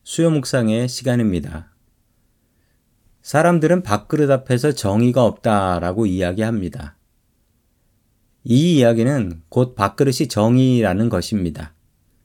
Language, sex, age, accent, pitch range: Korean, male, 40-59, native, 100-135 Hz